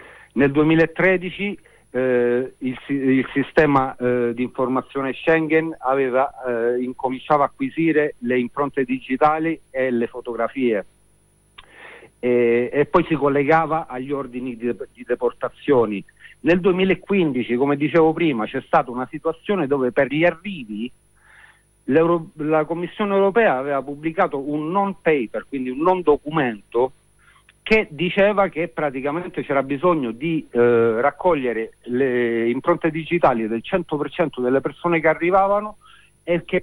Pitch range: 130-175 Hz